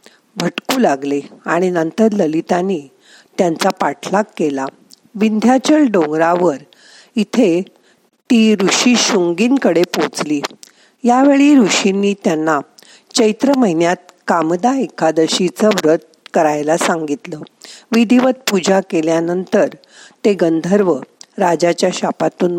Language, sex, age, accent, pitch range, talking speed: Marathi, female, 50-69, native, 160-230 Hz, 85 wpm